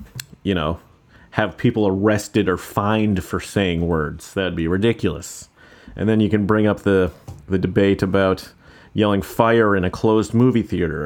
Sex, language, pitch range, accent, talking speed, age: male, English, 95-125 Hz, American, 165 wpm, 30-49